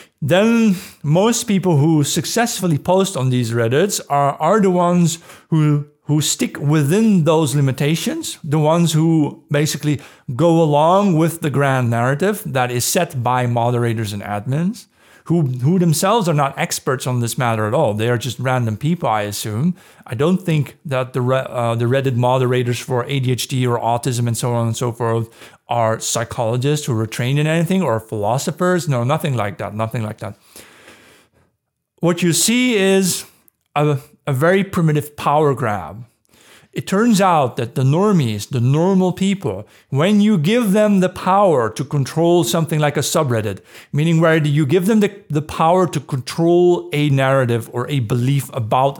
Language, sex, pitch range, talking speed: English, male, 120-170 Hz, 165 wpm